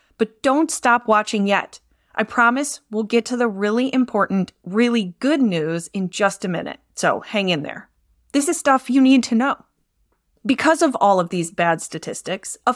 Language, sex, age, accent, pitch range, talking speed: English, female, 30-49, American, 185-255 Hz, 185 wpm